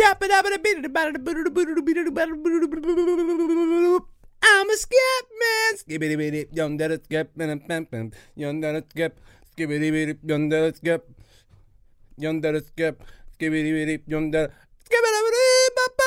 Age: 20-39